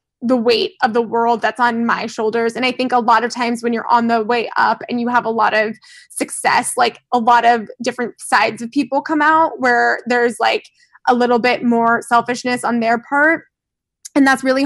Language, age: English, 20-39